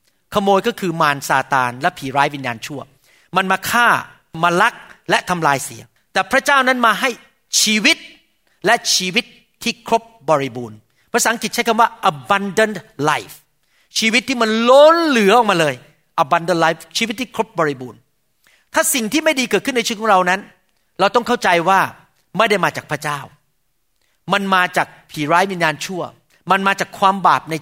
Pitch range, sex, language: 155-225 Hz, male, Thai